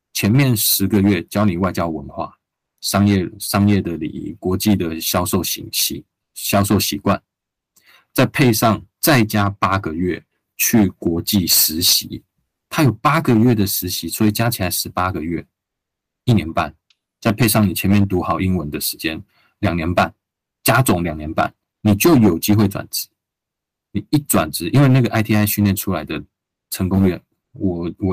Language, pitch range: Chinese, 90-110 Hz